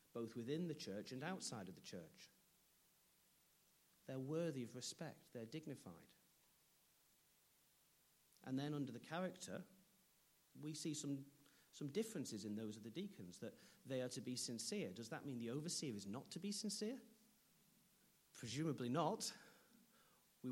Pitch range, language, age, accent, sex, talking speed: 140-190 Hz, English, 40-59, British, male, 145 wpm